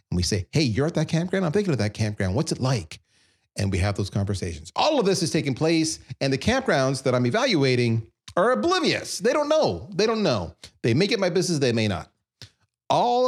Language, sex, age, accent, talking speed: English, male, 40-59, American, 225 wpm